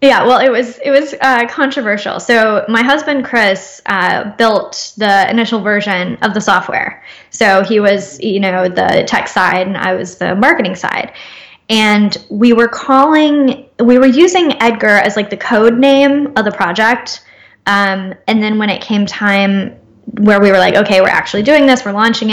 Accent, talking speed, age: American, 185 wpm, 10-29